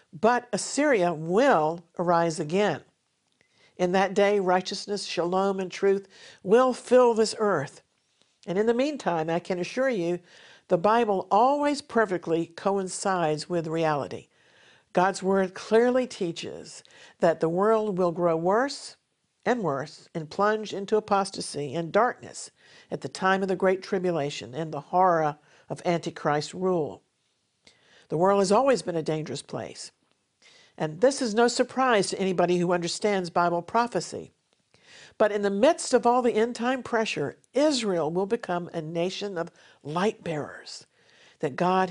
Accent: American